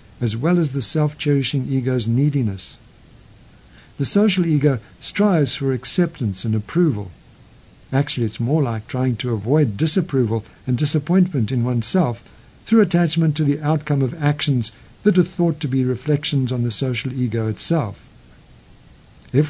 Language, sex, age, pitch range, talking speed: English, male, 60-79, 120-160 Hz, 140 wpm